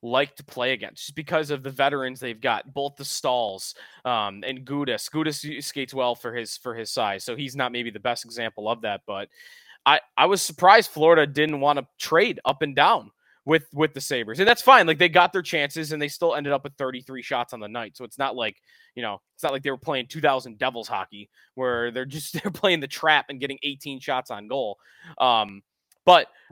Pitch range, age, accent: 125-170 Hz, 20-39, American